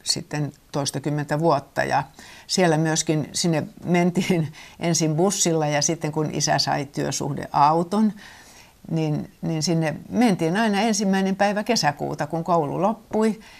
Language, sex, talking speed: Finnish, female, 125 wpm